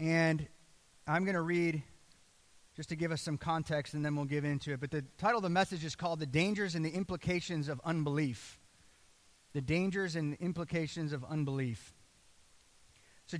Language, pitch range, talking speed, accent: English, 145-180 Hz, 175 wpm, American